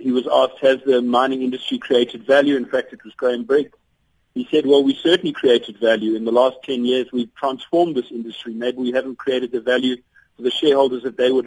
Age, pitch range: 50-69, 125-150 Hz